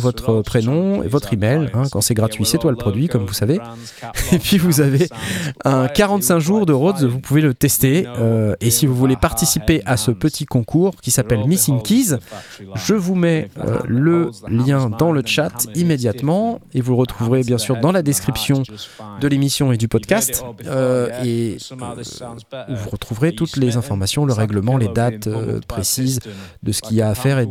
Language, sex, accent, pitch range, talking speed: French, male, French, 115-150 Hz, 190 wpm